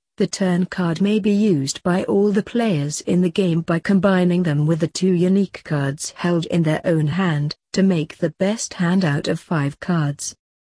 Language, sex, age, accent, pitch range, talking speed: English, female, 40-59, British, 150-195 Hz, 195 wpm